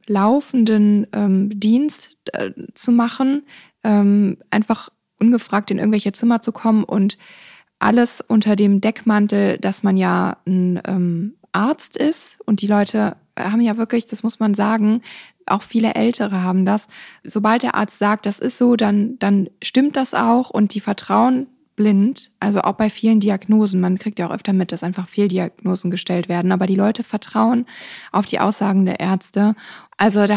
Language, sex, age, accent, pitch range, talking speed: English, female, 20-39, German, 195-225 Hz, 165 wpm